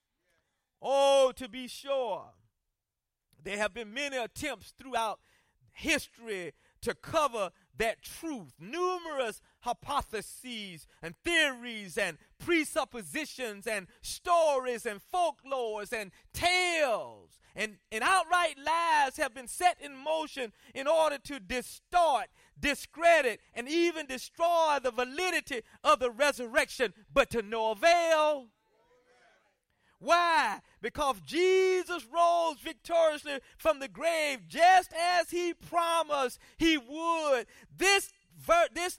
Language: English